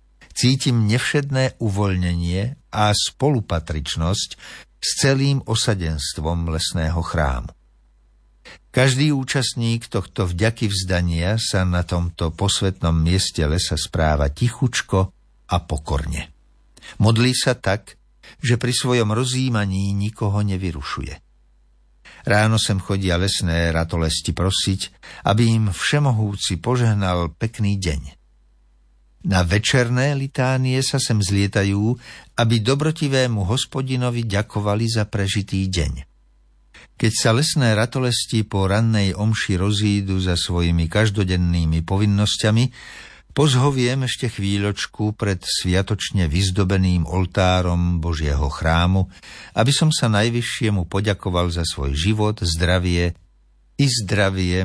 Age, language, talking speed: 60-79, Slovak, 100 wpm